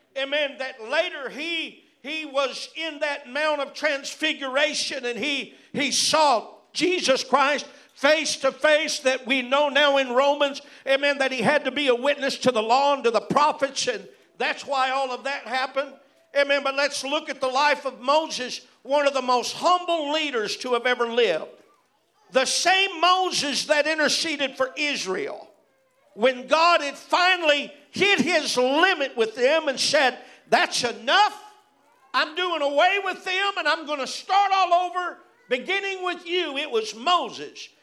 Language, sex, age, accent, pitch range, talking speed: English, male, 50-69, American, 240-310 Hz, 165 wpm